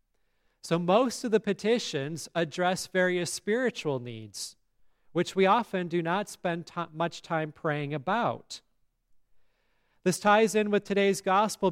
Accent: American